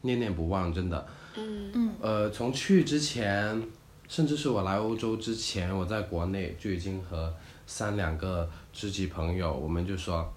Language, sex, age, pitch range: Chinese, male, 20-39, 85-115 Hz